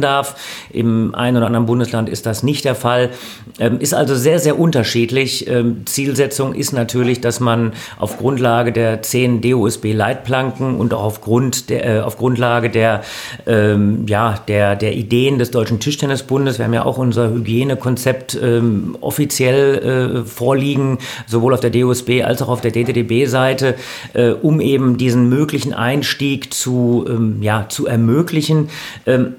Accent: German